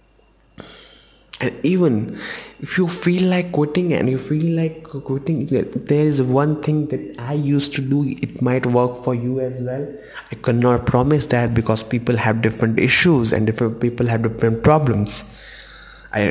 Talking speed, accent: 160 wpm, Indian